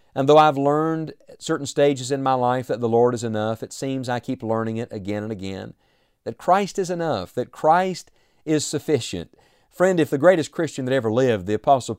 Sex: male